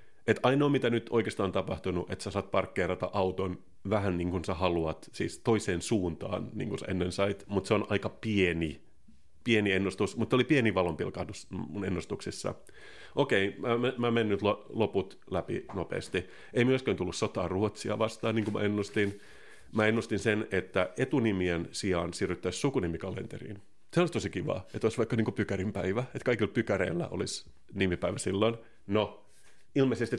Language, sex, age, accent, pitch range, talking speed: Finnish, male, 30-49, native, 90-110 Hz, 160 wpm